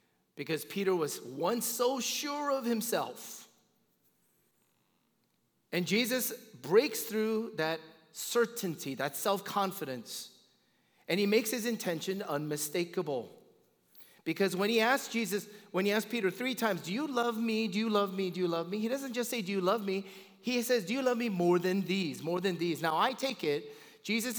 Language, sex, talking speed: English, male, 170 wpm